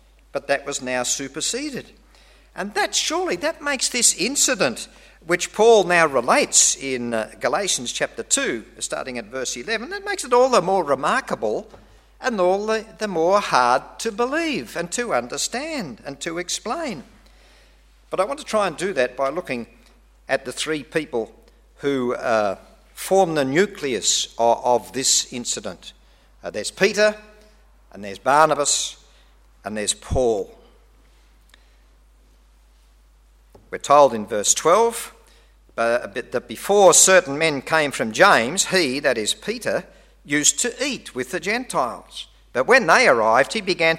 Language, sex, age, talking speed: English, male, 50-69, 145 wpm